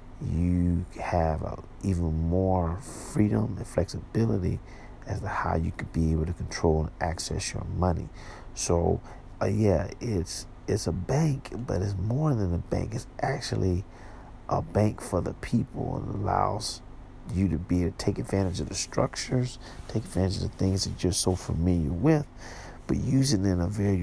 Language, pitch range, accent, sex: English, 80-105 Hz, American, male